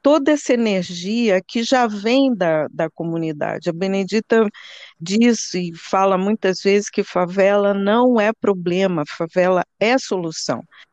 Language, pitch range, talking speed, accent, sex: Portuguese, 175-220 Hz, 130 wpm, Brazilian, female